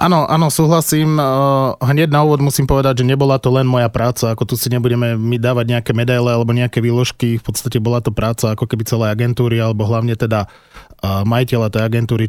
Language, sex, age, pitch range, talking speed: Slovak, male, 20-39, 110-135 Hz, 195 wpm